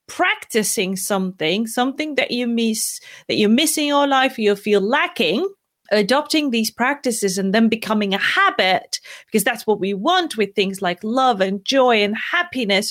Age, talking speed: 30-49, 170 wpm